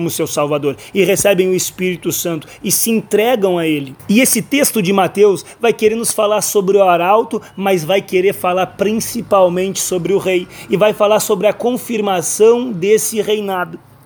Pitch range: 175-215 Hz